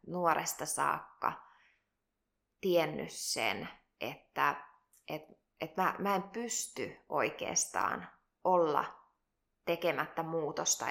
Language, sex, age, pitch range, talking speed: Finnish, female, 20-39, 150-170 Hz, 85 wpm